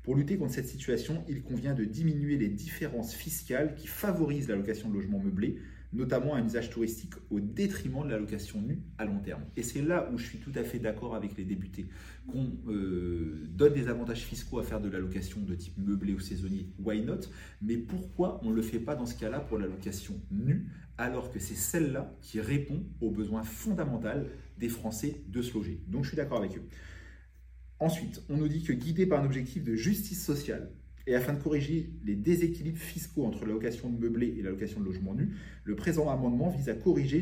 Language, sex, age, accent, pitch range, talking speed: French, male, 30-49, French, 105-150 Hz, 205 wpm